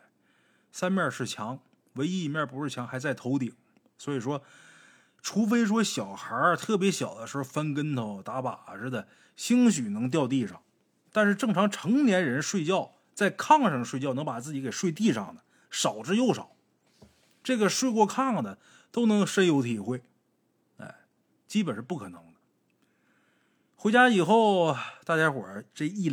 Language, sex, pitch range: Chinese, male, 130-190 Hz